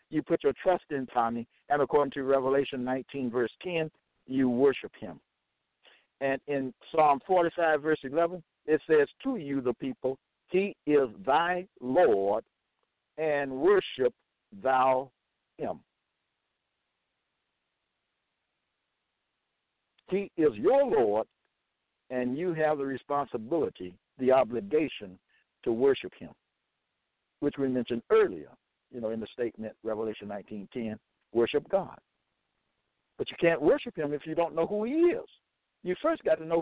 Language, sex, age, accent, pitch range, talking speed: English, male, 60-79, American, 130-170 Hz, 135 wpm